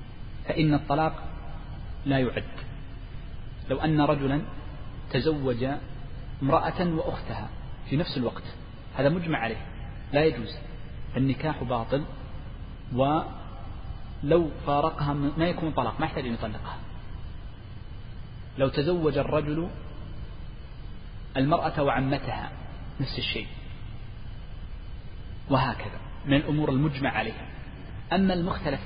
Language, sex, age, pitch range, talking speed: Arabic, male, 40-59, 110-150 Hz, 90 wpm